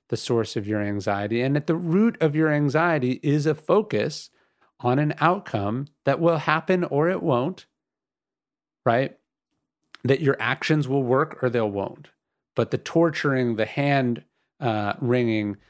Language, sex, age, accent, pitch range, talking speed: English, male, 30-49, American, 115-150 Hz, 155 wpm